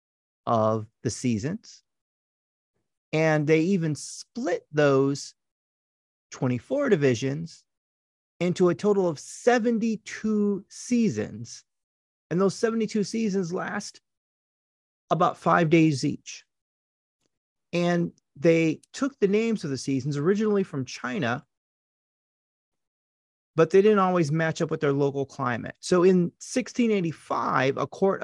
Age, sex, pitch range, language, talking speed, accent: 30-49, male, 130-195 Hz, English, 110 wpm, American